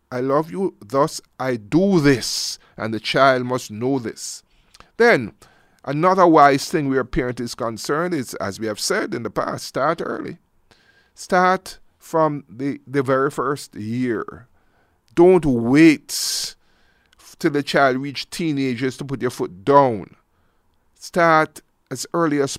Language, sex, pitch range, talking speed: English, male, 130-170 Hz, 145 wpm